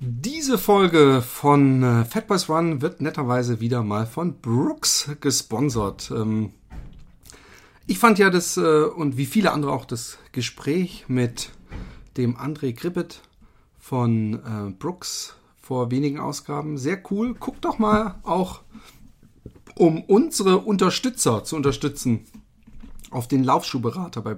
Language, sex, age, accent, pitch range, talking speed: German, male, 40-59, German, 125-185 Hz, 130 wpm